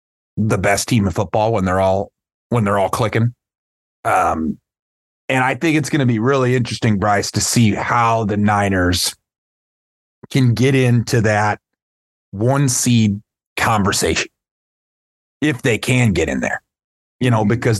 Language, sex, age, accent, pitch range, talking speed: English, male, 30-49, American, 100-130 Hz, 150 wpm